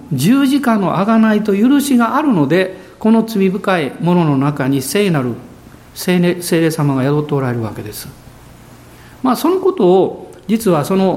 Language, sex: Japanese, male